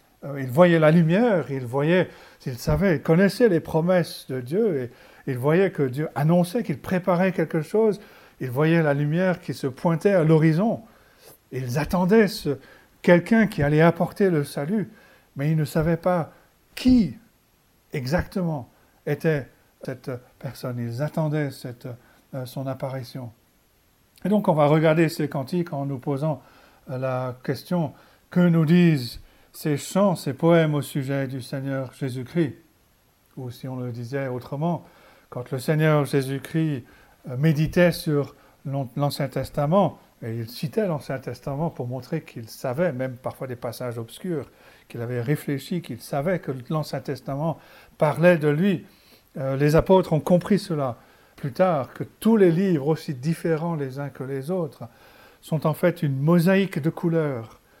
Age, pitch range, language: 60-79, 135-175 Hz, French